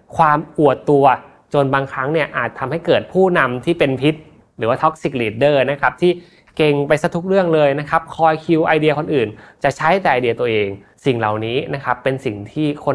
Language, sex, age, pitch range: Thai, male, 20-39, 120-160 Hz